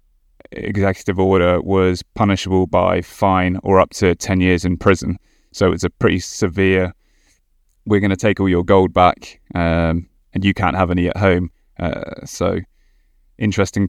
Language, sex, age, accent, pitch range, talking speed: English, male, 20-39, British, 90-100 Hz, 160 wpm